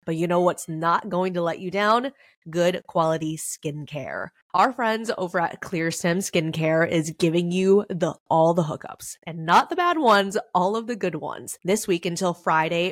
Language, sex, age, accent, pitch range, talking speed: English, female, 20-39, American, 160-200 Hz, 190 wpm